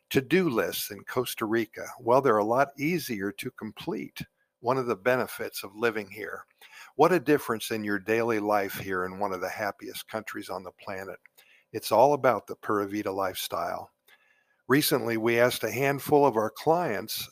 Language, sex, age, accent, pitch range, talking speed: English, male, 50-69, American, 105-130 Hz, 180 wpm